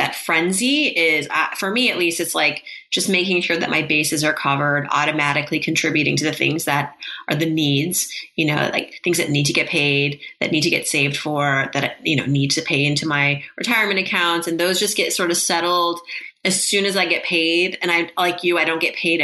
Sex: female